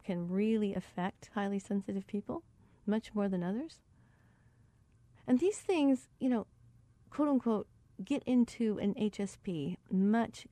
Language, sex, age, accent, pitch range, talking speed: English, female, 40-59, American, 170-215 Hz, 120 wpm